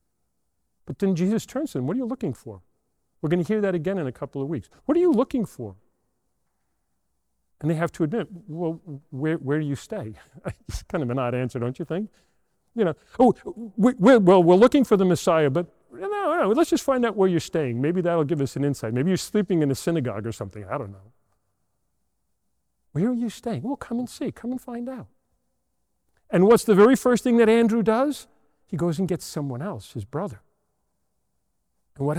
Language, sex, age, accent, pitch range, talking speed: English, male, 40-59, American, 155-230 Hz, 215 wpm